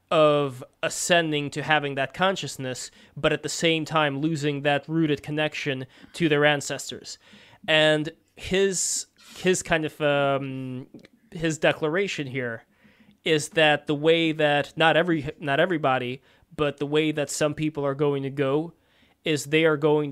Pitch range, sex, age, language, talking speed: 140-160 Hz, male, 20-39, English, 150 wpm